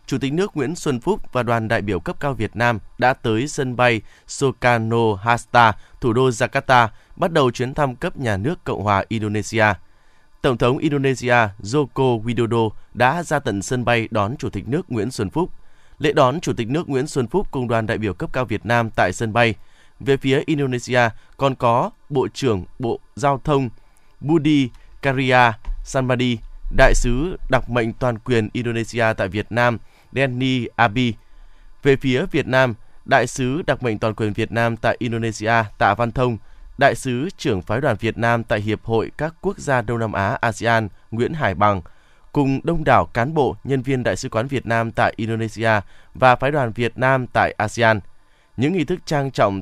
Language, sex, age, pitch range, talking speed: Vietnamese, male, 20-39, 110-135 Hz, 190 wpm